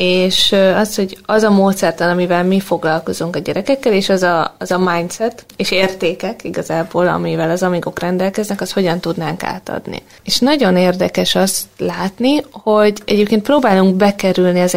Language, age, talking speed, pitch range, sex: Hungarian, 20-39, 155 wpm, 175-215 Hz, female